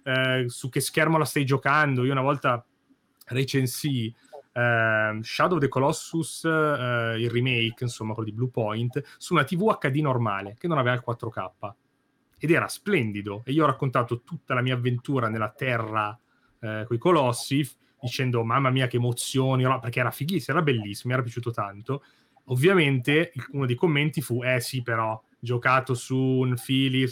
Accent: native